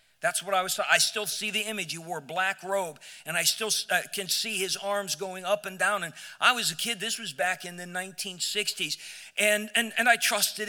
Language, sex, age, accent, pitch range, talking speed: English, male, 50-69, American, 185-225 Hz, 235 wpm